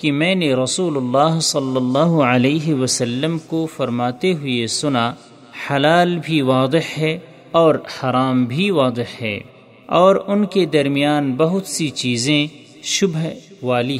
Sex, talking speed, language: male, 135 wpm, Urdu